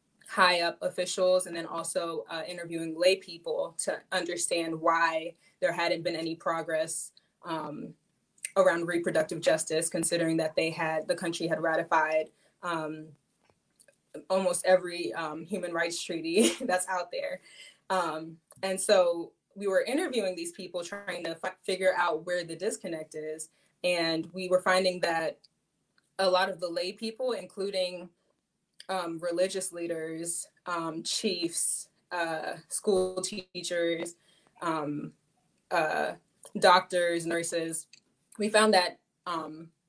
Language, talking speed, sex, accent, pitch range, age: English, 125 wpm, female, American, 165-185 Hz, 20-39